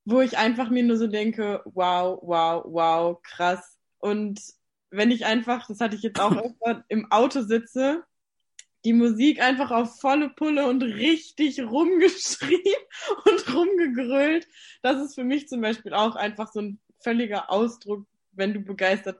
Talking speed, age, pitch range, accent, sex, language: 155 wpm, 20-39, 220-305 Hz, German, female, German